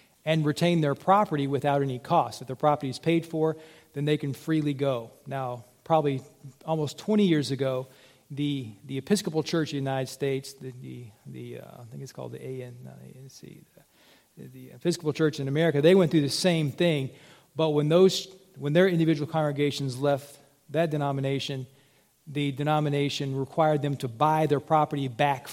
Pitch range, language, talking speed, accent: 135-155 Hz, English, 170 wpm, American